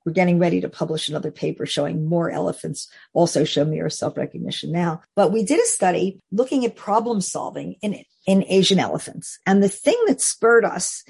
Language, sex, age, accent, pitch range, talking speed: English, female, 50-69, American, 175-220 Hz, 190 wpm